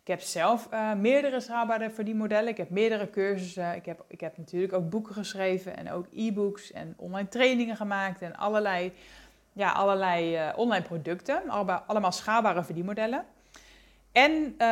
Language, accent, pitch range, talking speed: English, Dutch, 175-220 Hz, 150 wpm